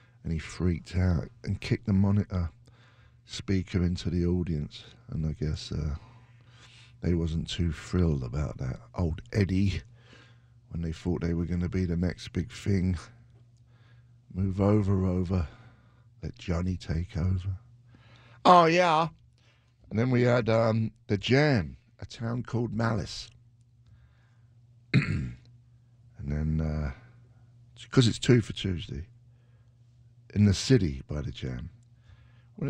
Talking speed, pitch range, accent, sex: 130 wpm, 90-120 Hz, British, male